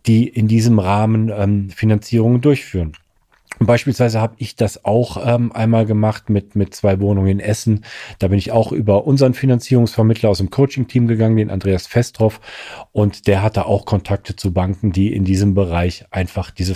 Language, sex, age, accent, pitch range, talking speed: German, male, 40-59, German, 100-120 Hz, 170 wpm